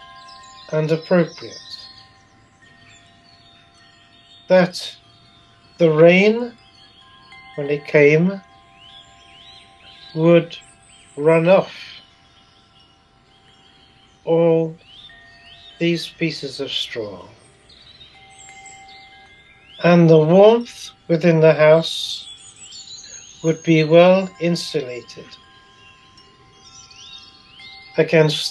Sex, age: male, 60-79